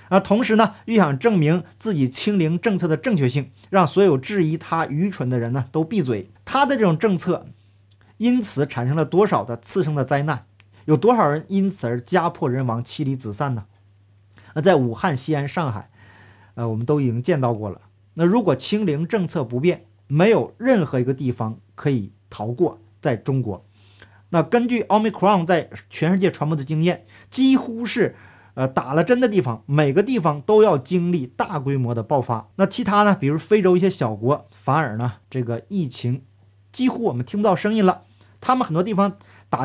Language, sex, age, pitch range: Chinese, male, 50-69, 115-185 Hz